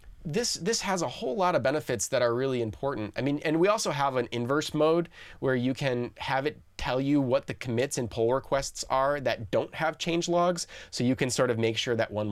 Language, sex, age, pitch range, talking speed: English, male, 30-49, 110-140 Hz, 240 wpm